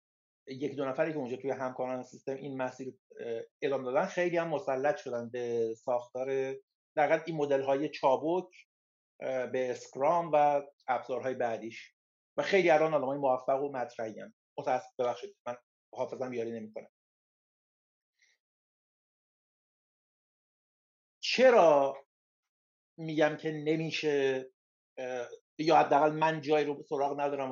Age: 50-69